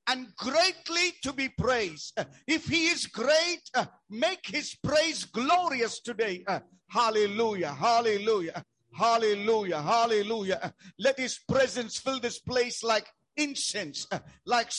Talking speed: 110 wpm